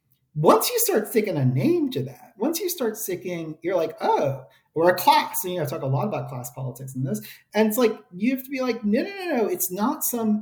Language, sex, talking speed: English, male, 260 wpm